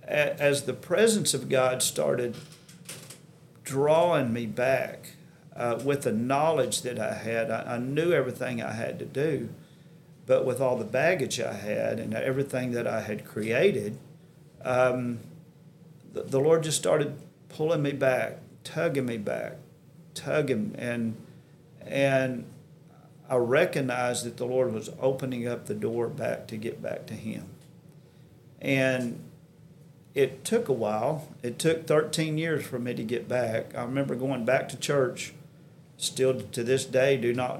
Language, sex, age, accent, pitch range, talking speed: English, male, 50-69, American, 125-155 Hz, 150 wpm